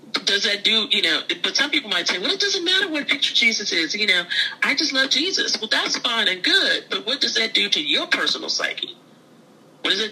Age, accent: 40-59, American